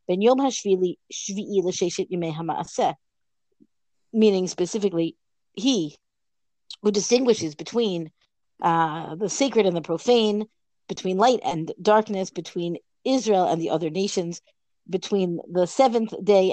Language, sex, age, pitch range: English, female, 50-69, 180-245 Hz